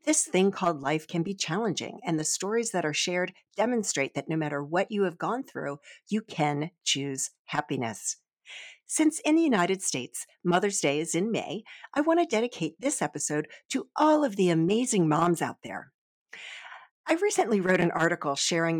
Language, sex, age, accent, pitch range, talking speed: English, female, 50-69, American, 150-235 Hz, 180 wpm